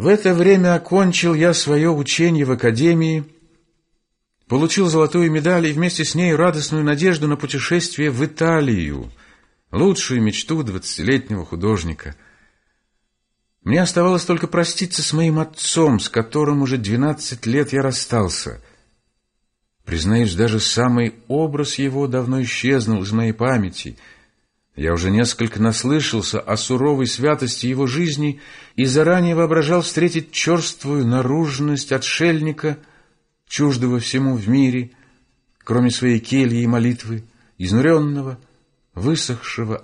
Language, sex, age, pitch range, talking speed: Russian, male, 50-69, 115-155 Hz, 115 wpm